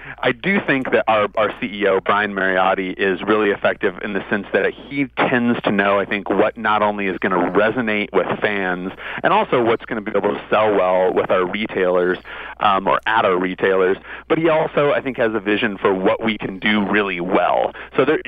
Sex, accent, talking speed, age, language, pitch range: male, American, 215 wpm, 30-49, English, 100-125 Hz